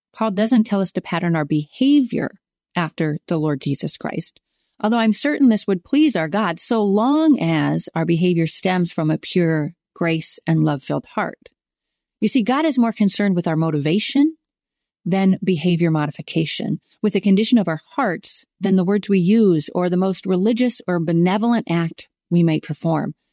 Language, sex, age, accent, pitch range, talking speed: English, female, 40-59, American, 165-220 Hz, 170 wpm